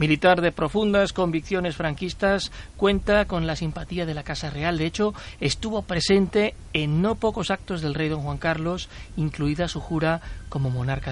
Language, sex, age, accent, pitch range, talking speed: Spanish, male, 40-59, Spanish, 145-200 Hz, 165 wpm